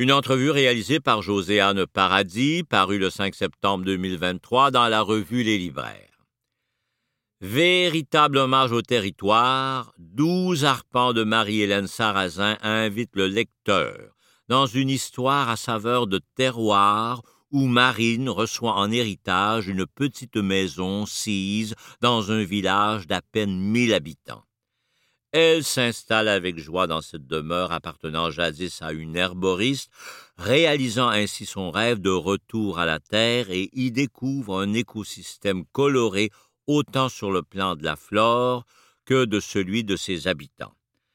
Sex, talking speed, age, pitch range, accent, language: male, 135 wpm, 60-79, 95-130 Hz, French, French